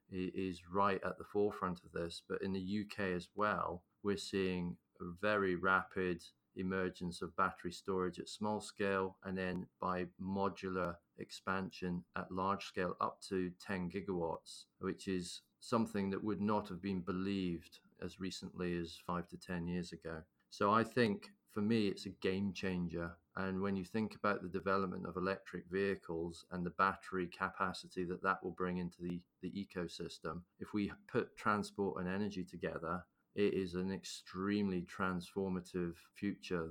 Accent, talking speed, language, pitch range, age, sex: British, 160 wpm, English, 90-95 Hz, 30-49, male